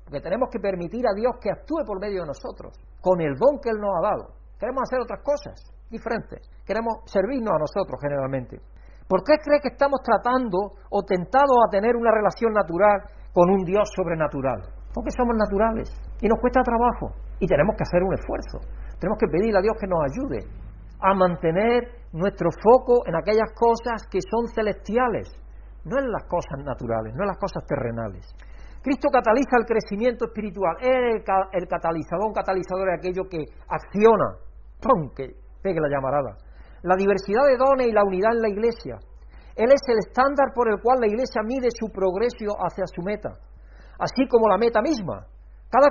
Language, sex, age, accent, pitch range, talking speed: Spanish, male, 60-79, Spanish, 175-240 Hz, 185 wpm